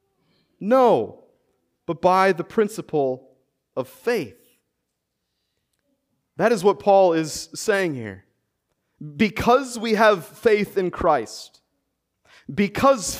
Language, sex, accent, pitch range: English, male, American, 160-250 Hz